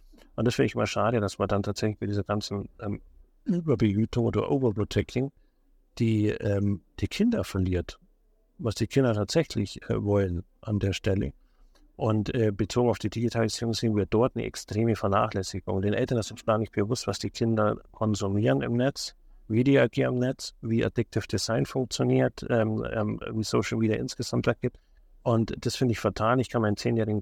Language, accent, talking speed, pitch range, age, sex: German, German, 180 wpm, 100-120 Hz, 50-69, male